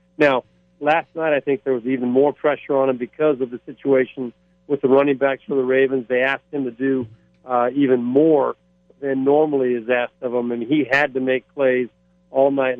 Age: 50-69